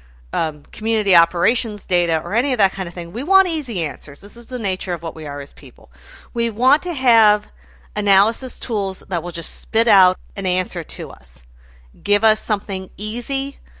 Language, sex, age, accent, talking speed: English, female, 40-59, American, 190 wpm